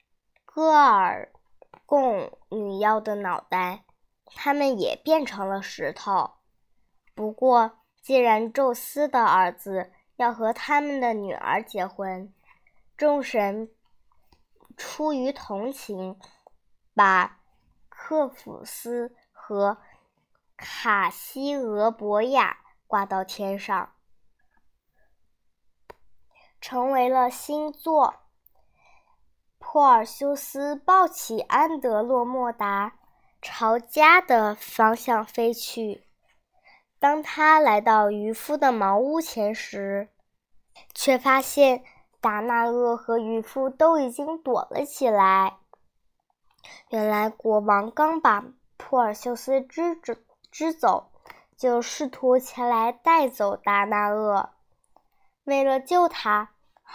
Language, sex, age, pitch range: Chinese, male, 10-29, 215-280 Hz